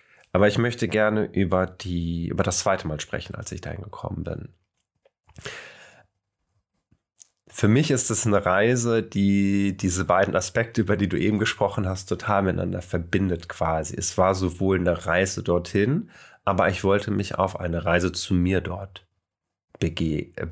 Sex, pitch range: male, 90-110 Hz